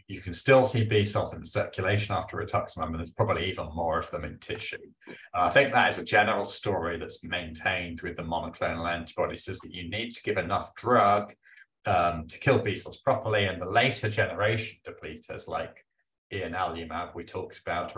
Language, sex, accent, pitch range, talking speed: English, male, British, 85-110 Hz, 185 wpm